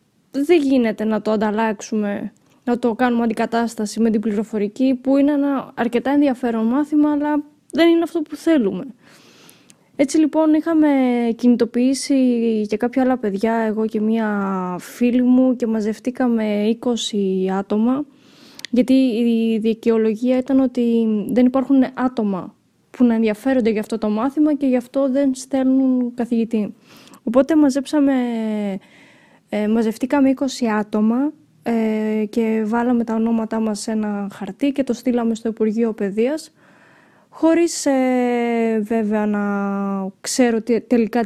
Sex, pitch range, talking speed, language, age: female, 215-265 Hz, 125 wpm, Greek, 20-39